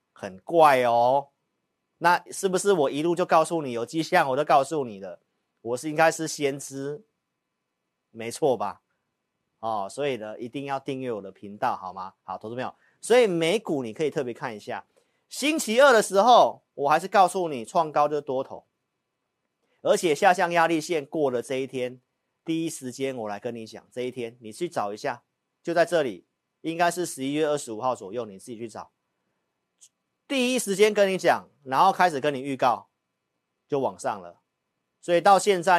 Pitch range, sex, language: 125-175 Hz, male, Chinese